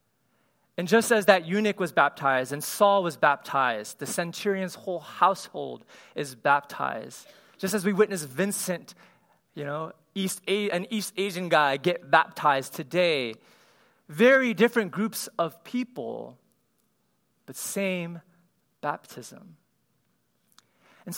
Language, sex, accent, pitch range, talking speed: English, male, American, 150-210 Hz, 120 wpm